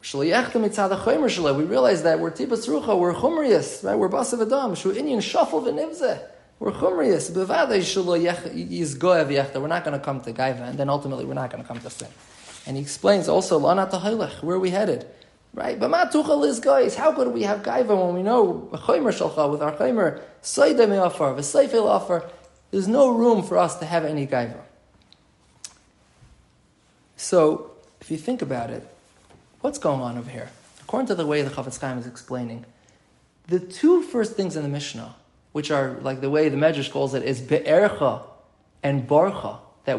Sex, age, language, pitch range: male, 20-39, English, 135-200 Hz